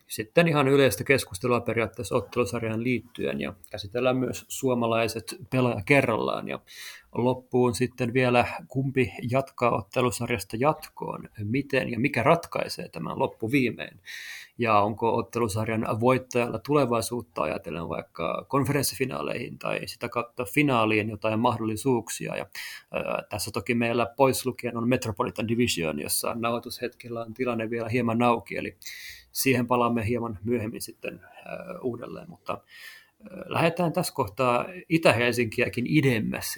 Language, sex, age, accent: Finnish, male, 30-49, native